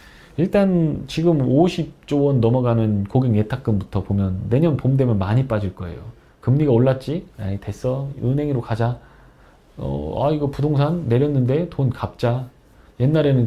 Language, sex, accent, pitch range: Korean, male, native, 105-140 Hz